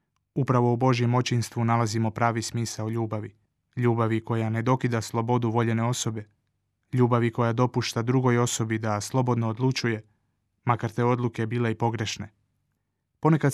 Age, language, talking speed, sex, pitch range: 20-39, Croatian, 135 wpm, male, 110-125 Hz